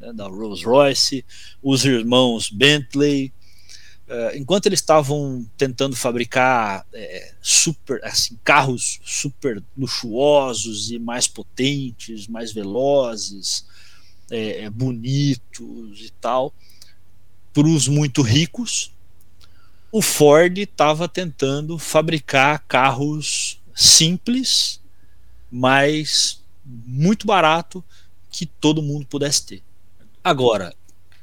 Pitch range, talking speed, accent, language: 105-155 Hz, 80 wpm, Brazilian, Portuguese